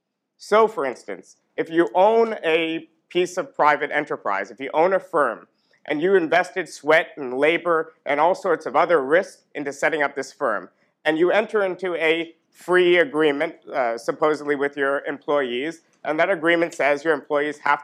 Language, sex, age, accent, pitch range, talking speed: English, male, 50-69, American, 145-175 Hz, 175 wpm